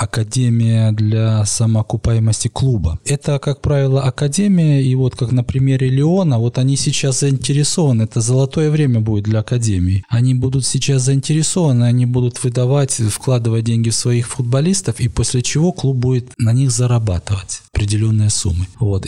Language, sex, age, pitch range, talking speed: Russian, male, 20-39, 105-125 Hz, 150 wpm